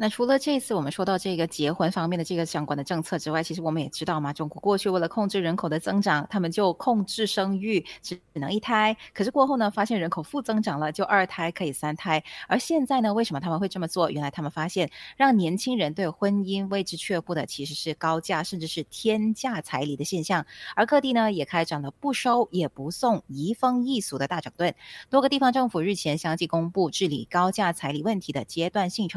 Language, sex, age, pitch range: English, female, 20-39, 155-215 Hz